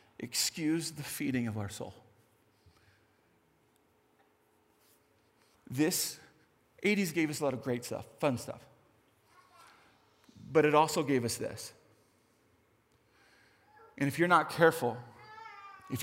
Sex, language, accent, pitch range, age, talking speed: male, English, American, 125-155 Hz, 40-59, 110 wpm